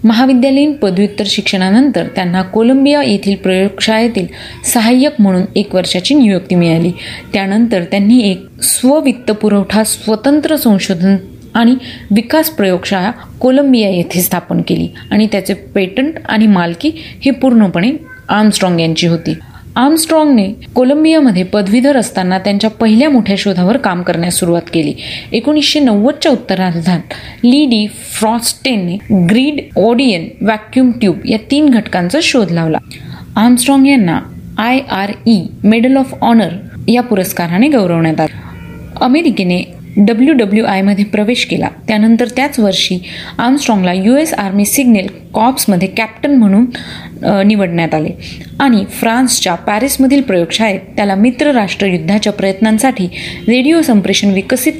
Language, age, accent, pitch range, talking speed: Marathi, 30-49, native, 190-255 Hz, 100 wpm